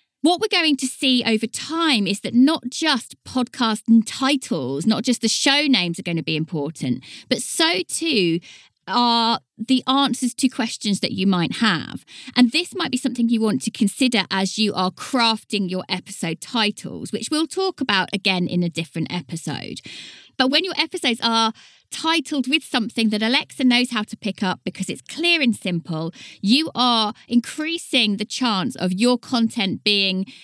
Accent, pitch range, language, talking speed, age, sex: British, 195-260 Hz, English, 175 wpm, 20-39, female